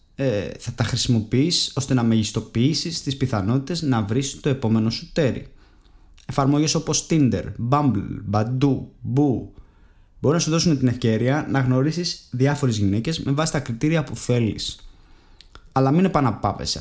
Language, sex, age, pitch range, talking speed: Greek, male, 20-39, 100-145 Hz, 140 wpm